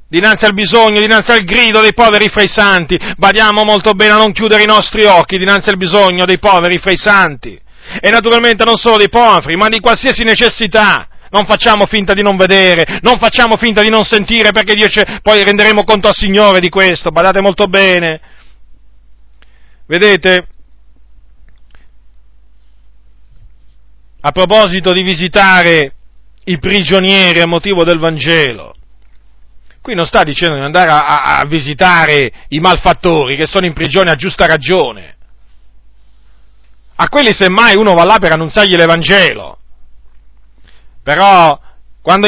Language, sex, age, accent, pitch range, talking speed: Italian, male, 40-59, native, 145-210 Hz, 145 wpm